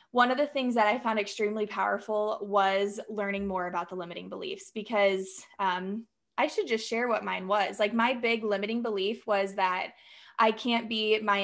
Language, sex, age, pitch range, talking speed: English, female, 20-39, 200-240 Hz, 190 wpm